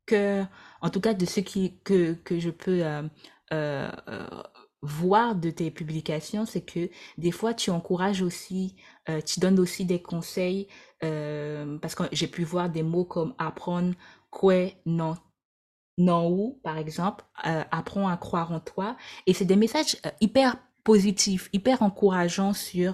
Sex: female